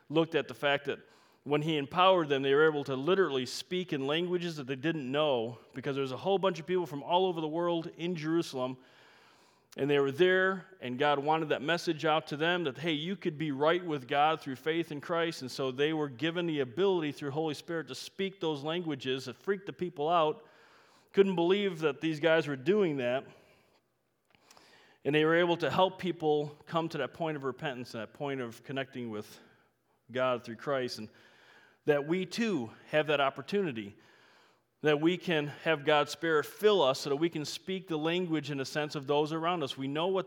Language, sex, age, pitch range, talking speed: English, male, 40-59, 140-175 Hz, 210 wpm